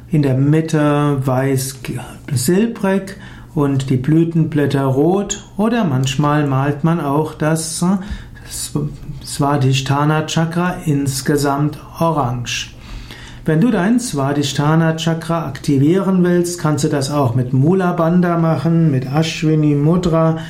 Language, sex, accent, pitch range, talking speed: German, male, German, 140-175 Hz, 105 wpm